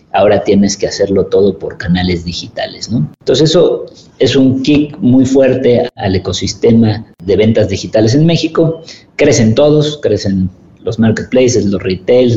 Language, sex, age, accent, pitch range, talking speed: Spanish, male, 50-69, Mexican, 100-125 Hz, 145 wpm